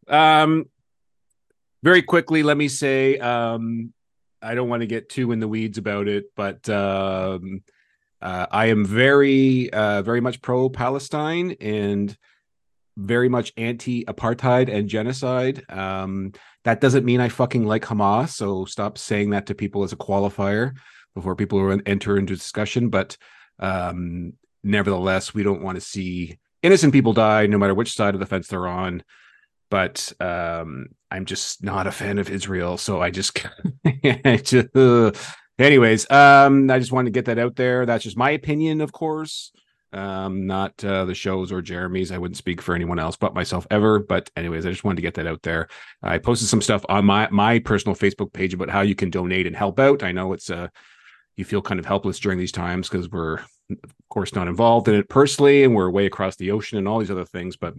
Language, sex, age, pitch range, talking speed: English, male, 40-59, 95-125 Hz, 195 wpm